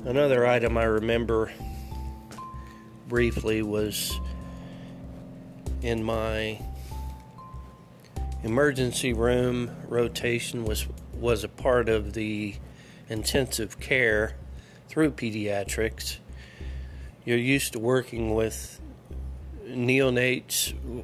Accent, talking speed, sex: American, 75 wpm, male